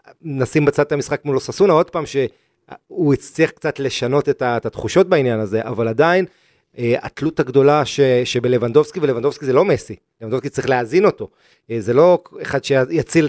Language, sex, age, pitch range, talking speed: Hebrew, male, 30-49, 115-150 Hz, 150 wpm